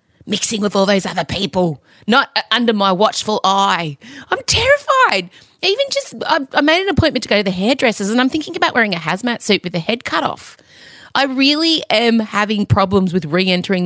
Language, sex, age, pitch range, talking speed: English, female, 30-49, 155-240 Hz, 200 wpm